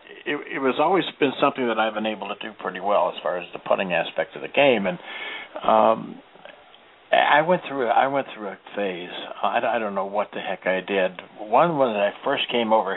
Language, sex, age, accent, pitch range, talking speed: English, male, 60-79, American, 100-125 Hz, 220 wpm